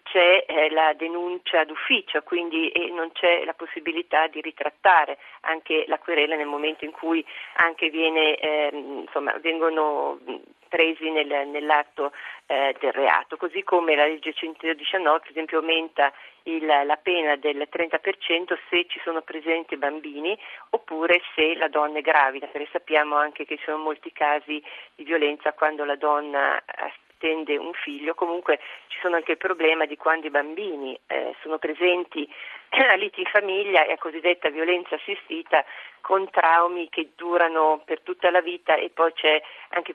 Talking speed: 160 wpm